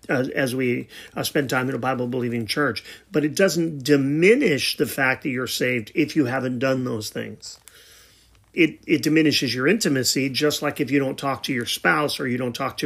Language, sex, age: English, male, 40-59